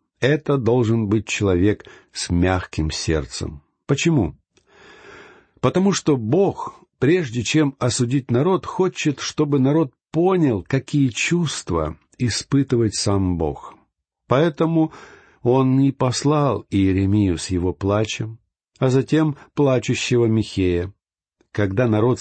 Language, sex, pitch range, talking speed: Russian, male, 100-135 Hz, 105 wpm